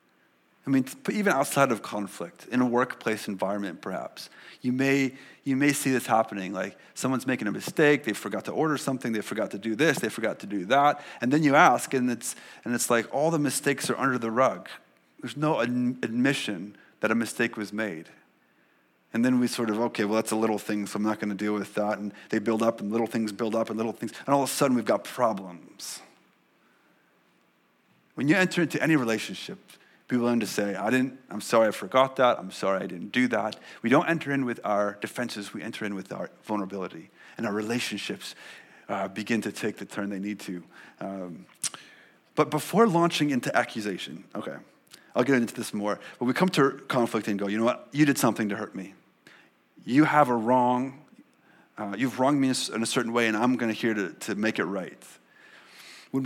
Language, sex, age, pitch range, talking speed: English, male, 30-49, 105-135 Hz, 215 wpm